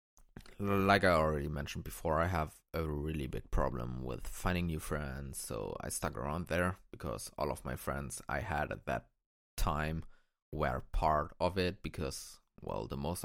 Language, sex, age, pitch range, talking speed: English, male, 20-39, 75-95 Hz, 170 wpm